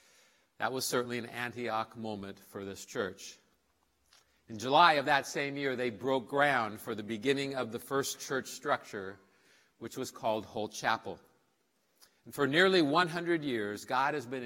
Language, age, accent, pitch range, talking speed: English, 50-69, American, 110-140 Hz, 160 wpm